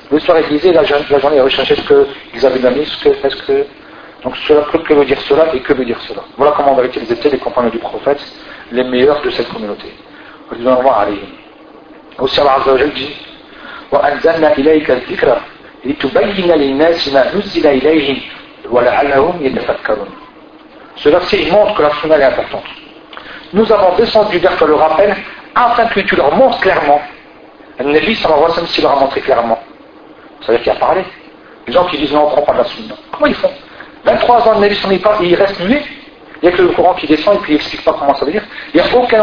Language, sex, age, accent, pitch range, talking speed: French, male, 50-69, French, 150-225 Hz, 180 wpm